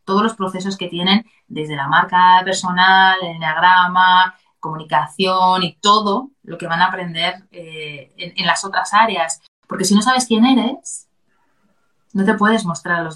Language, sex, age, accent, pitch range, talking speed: Spanish, female, 30-49, Spanish, 185-230 Hz, 170 wpm